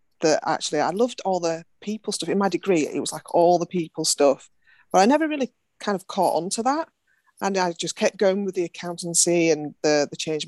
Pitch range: 165-210 Hz